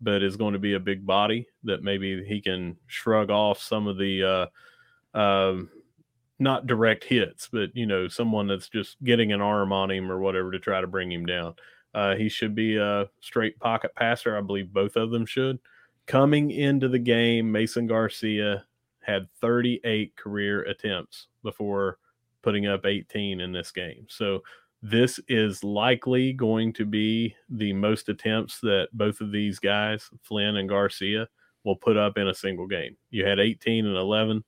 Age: 30-49